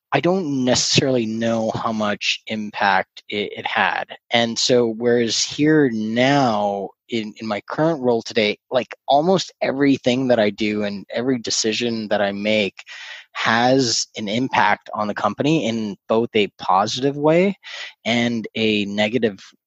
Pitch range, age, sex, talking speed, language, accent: 105-130 Hz, 20-39, male, 145 wpm, English, American